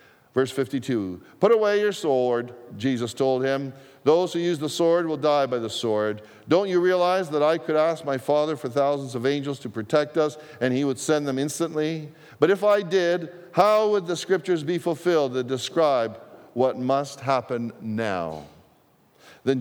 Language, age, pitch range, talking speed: English, 50-69, 125-170 Hz, 180 wpm